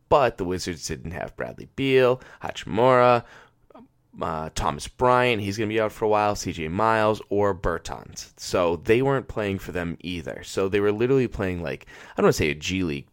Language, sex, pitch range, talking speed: English, male, 90-140 Hz, 200 wpm